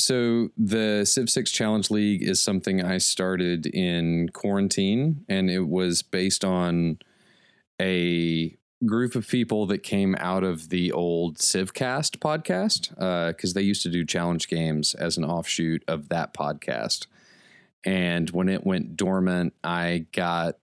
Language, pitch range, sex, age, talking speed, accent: English, 85-105 Hz, male, 30-49, 145 wpm, American